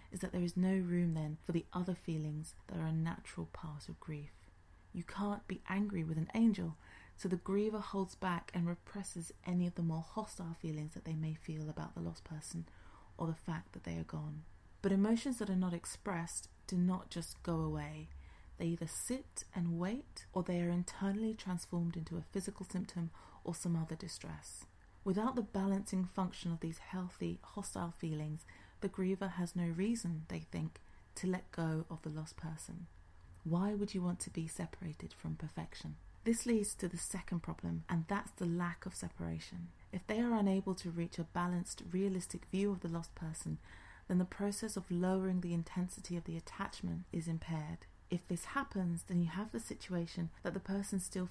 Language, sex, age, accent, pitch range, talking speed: English, female, 30-49, British, 155-190 Hz, 190 wpm